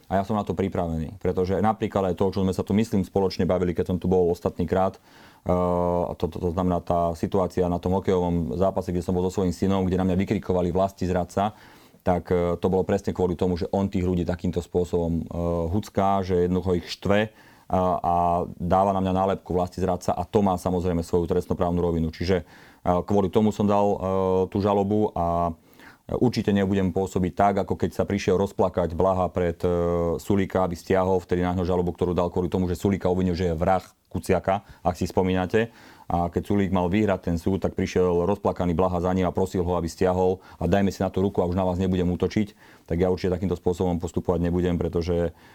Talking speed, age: 200 wpm, 30-49